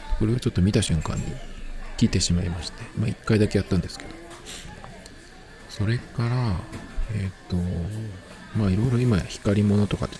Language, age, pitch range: Japanese, 40-59, 90-115 Hz